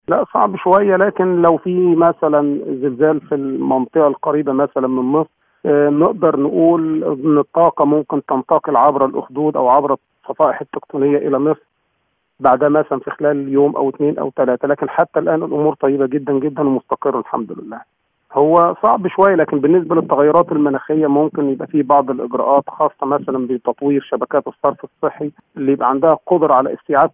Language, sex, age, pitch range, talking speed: Arabic, male, 40-59, 140-160 Hz, 160 wpm